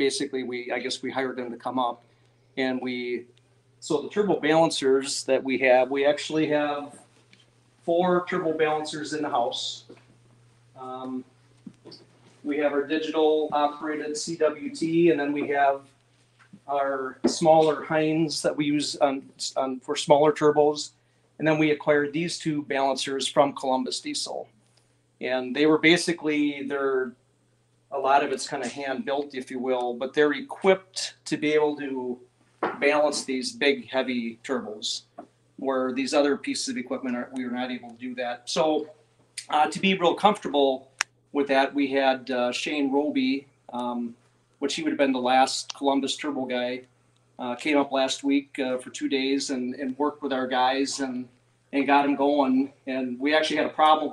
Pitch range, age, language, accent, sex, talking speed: 130-150 Hz, 40-59, English, American, male, 165 wpm